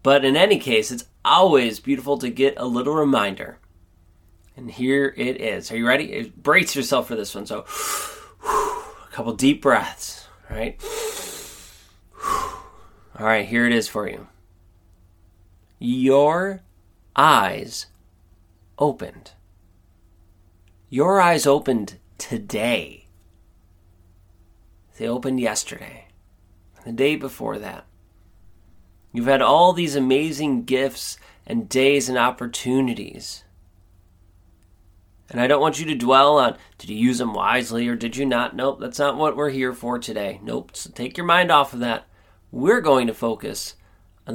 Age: 30-49